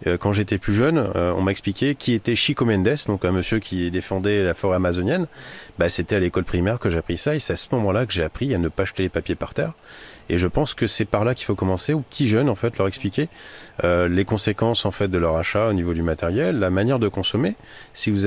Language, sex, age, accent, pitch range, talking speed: French, male, 30-49, French, 95-120 Hz, 265 wpm